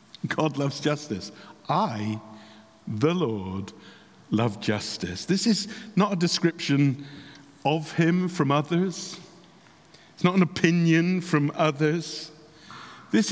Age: 50-69